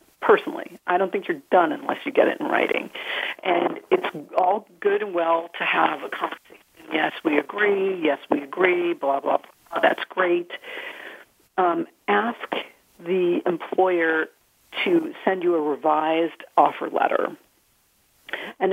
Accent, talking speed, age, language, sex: American, 145 wpm, 50-69, English, female